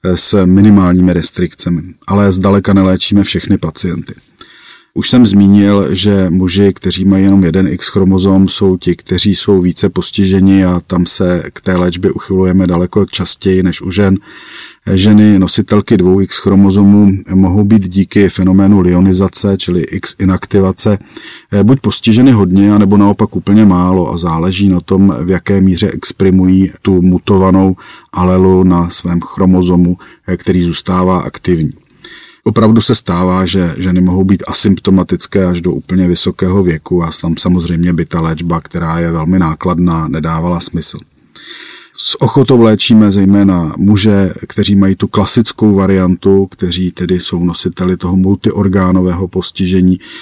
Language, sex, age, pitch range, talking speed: Czech, male, 40-59, 90-100 Hz, 135 wpm